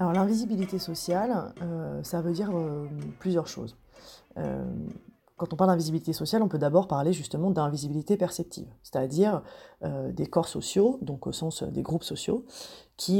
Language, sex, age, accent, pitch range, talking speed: French, female, 30-49, French, 140-180 Hz, 160 wpm